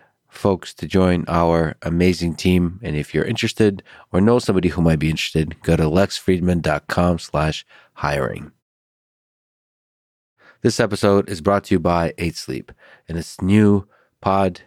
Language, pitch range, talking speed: English, 80-95 Hz, 145 wpm